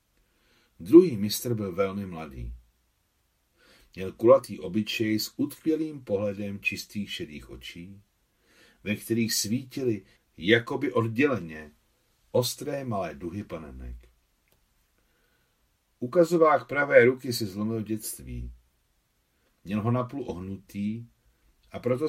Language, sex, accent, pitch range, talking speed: Czech, male, native, 90-120 Hz, 100 wpm